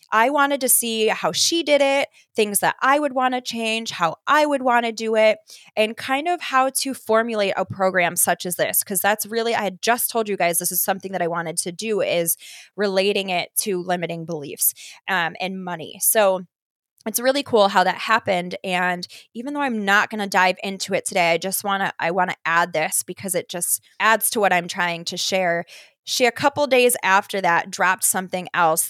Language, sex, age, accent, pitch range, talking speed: English, female, 20-39, American, 180-225 Hz, 220 wpm